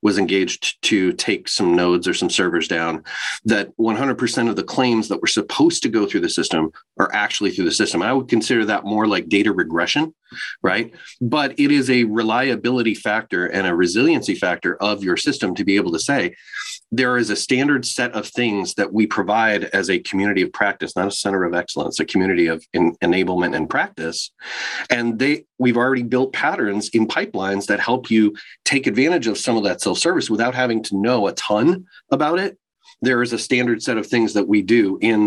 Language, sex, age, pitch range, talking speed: English, male, 30-49, 100-125 Hz, 200 wpm